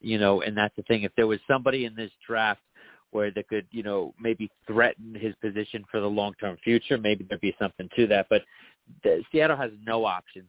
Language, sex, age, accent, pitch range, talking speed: English, male, 40-59, American, 110-135 Hz, 225 wpm